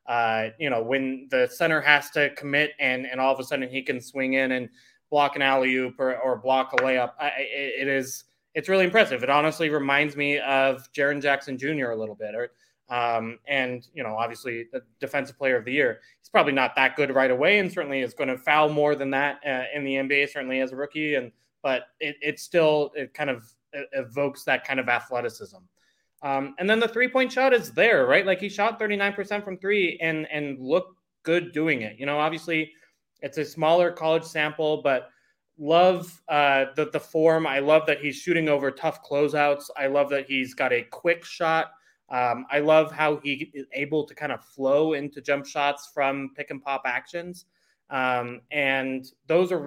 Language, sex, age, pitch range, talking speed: English, male, 20-39, 135-160 Hz, 205 wpm